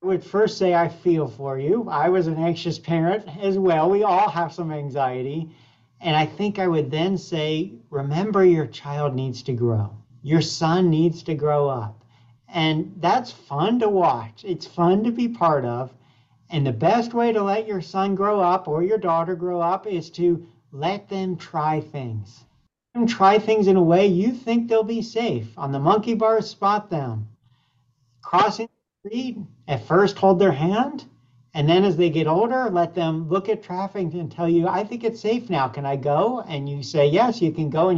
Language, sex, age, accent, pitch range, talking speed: English, male, 50-69, American, 145-195 Hz, 195 wpm